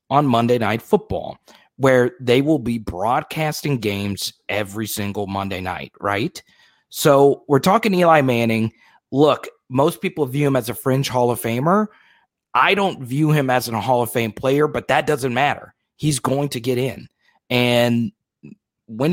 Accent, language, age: American, English, 30-49